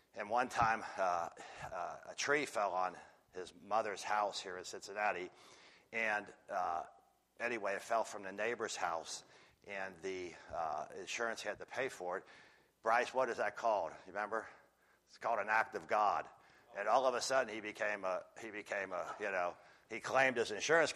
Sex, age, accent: male, 60-79, American